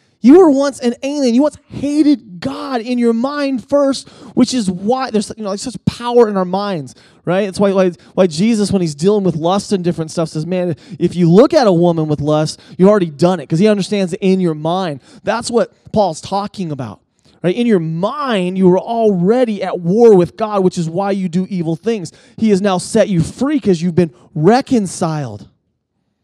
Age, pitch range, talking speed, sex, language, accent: 30-49, 160-215 Hz, 210 wpm, male, English, American